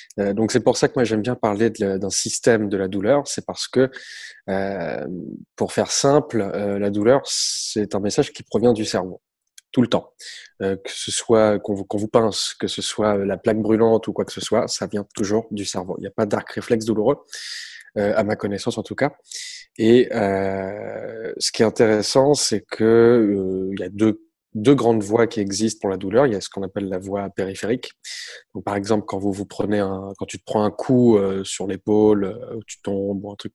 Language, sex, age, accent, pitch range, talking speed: French, male, 20-39, French, 100-120 Hz, 225 wpm